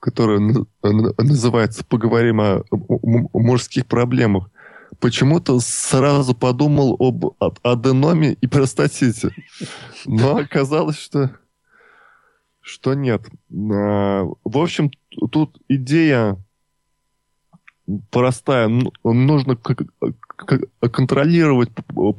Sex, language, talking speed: male, Russian, 70 wpm